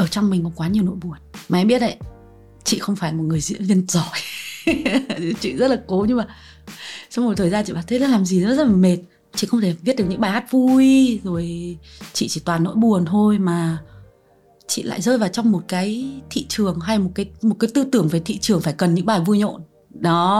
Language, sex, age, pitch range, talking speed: Vietnamese, female, 20-39, 170-220 Hz, 245 wpm